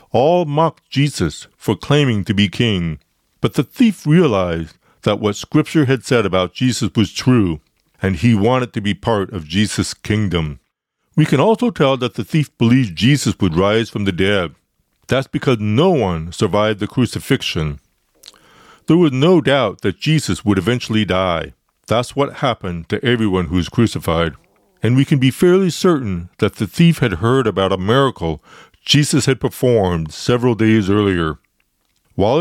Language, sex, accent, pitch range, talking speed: English, male, American, 95-135 Hz, 165 wpm